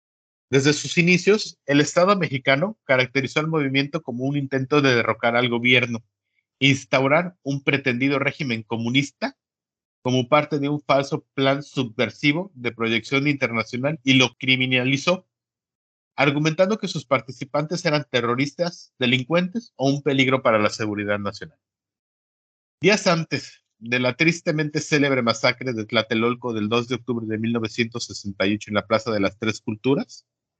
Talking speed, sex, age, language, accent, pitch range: 135 wpm, male, 50-69, Spanish, Mexican, 120-150 Hz